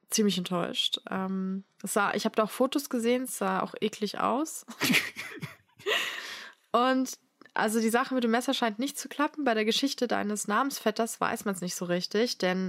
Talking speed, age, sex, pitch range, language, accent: 175 wpm, 20-39, female, 195-250 Hz, German, German